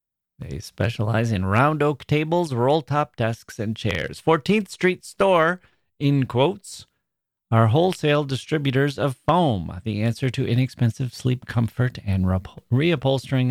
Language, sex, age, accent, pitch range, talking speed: English, male, 40-59, American, 105-145 Hz, 130 wpm